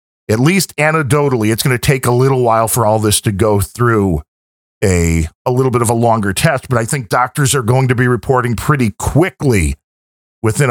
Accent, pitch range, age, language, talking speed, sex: American, 100-130 Hz, 40-59, English, 200 wpm, male